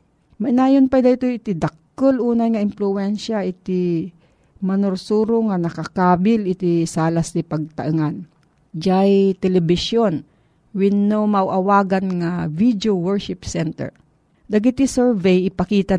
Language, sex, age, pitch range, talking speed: Filipino, female, 40-59, 165-210 Hz, 110 wpm